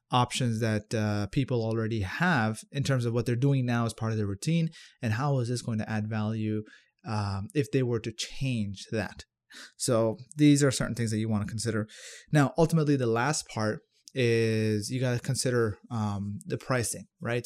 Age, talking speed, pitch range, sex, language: 30-49, 195 wpm, 110-135 Hz, male, English